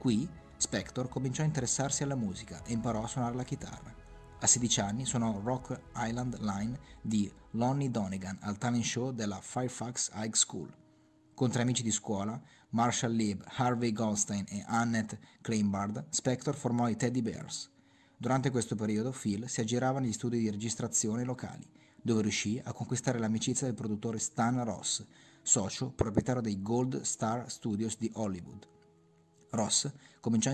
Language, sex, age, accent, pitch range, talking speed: Italian, male, 30-49, native, 105-125 Hz, 155 wpm